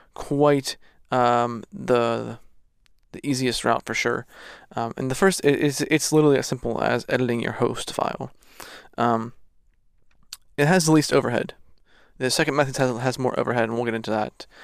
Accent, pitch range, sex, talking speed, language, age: American, 120-145 Hz, male, 165 wpm, English, 20-39